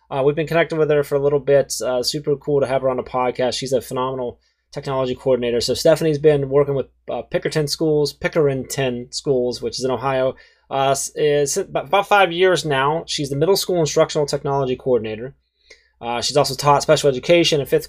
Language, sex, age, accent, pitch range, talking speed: English, male, 20-39, American, 125-150 Hz, 200 wpm